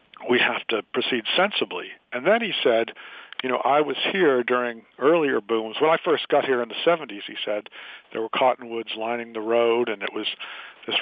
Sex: male